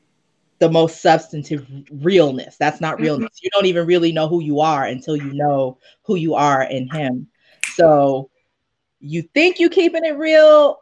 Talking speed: 165 wpm